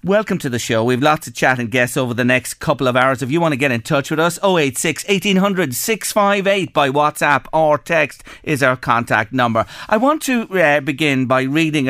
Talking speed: 200 wpm